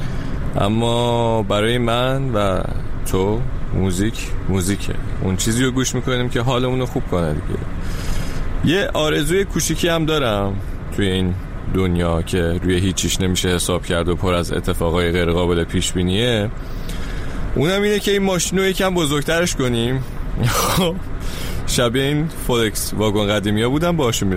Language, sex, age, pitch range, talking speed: Persian, male, 30-49, 90-125 Hz, 135 wpm